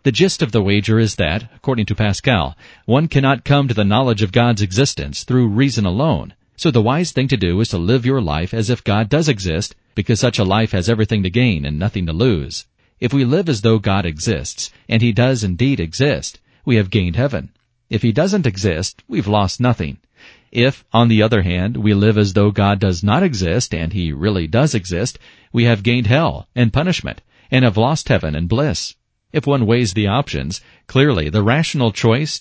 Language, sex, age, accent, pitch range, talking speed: English, male, 40-59, American, 100-125 Hz, 205 wpm